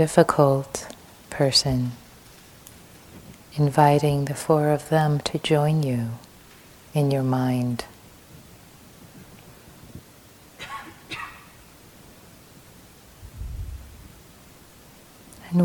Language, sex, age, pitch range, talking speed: English, female, 30-49, 120-155 Hz, 55 wpm